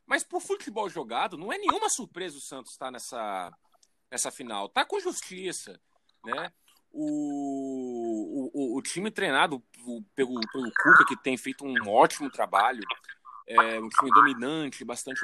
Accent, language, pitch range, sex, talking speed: Brazilian, Portuguese, 130-210 Hz, male, 145 wpm